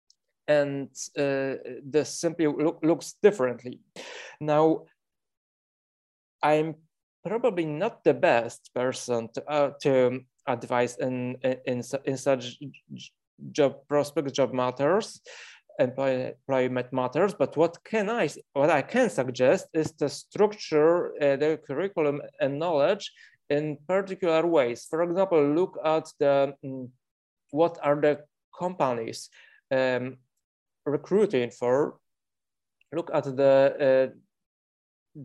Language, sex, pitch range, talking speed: Ukrainian, male, 130-155 Hz, 110 wpm